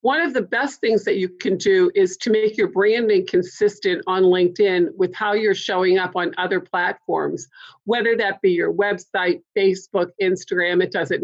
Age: 50-69